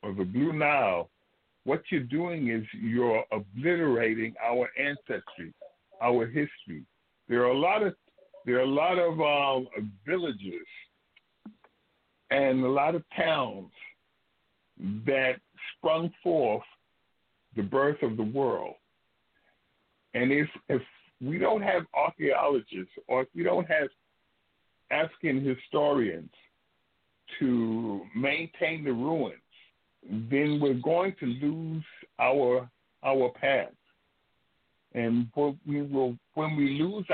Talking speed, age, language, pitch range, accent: 115 wpm, 60-79, English, 120-150 Hz, American